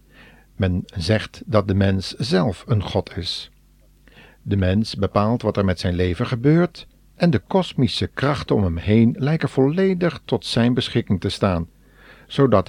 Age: 50-69